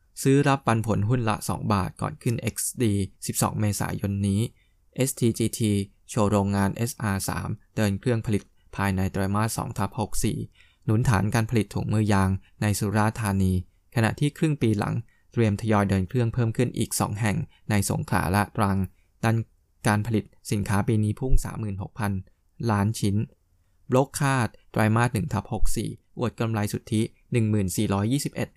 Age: 20-39